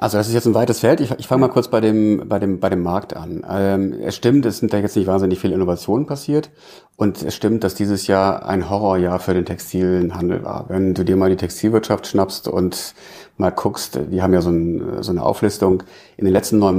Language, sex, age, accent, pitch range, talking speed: German, male, 40-59, German, 90-110 Hz, 235 wpm